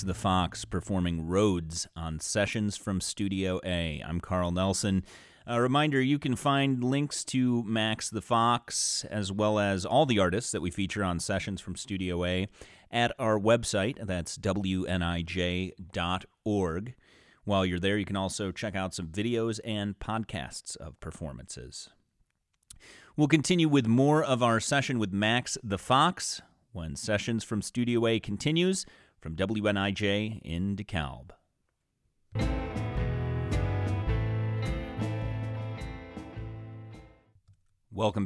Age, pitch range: 30-49, 95-115 Hz